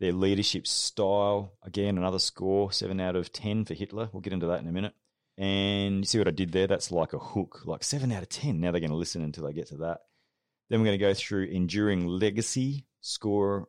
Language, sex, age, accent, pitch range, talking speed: English, male, 30-49, Australian, 85-105 Hz, 235 wpm